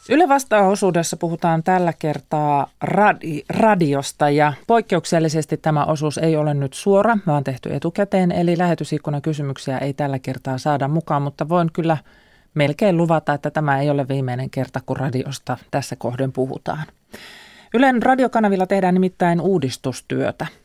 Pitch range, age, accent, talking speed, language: 145-190 Hz, 30-49, native, 135 wpm, Finnish